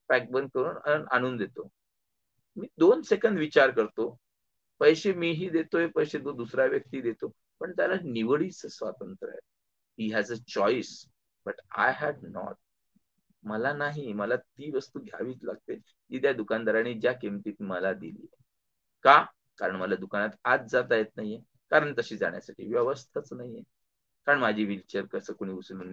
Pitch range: 125-205 Hz